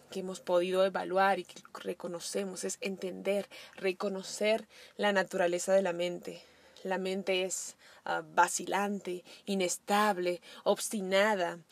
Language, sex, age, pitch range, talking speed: Spanish, female, 20-39, 180-210 Hz, 110 wpm